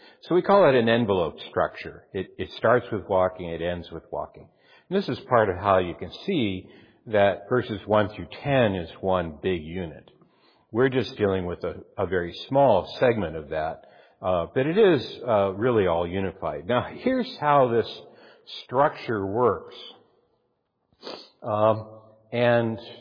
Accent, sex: American, male